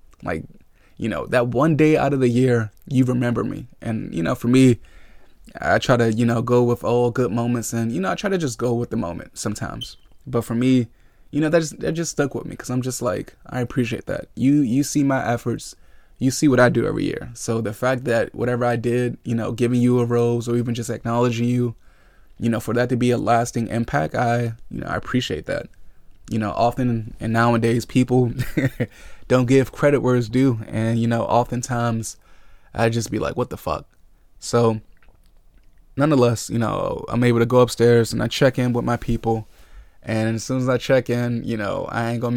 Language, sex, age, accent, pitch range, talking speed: English, male, 20-39, American, 115-125 Hz, 220 wpm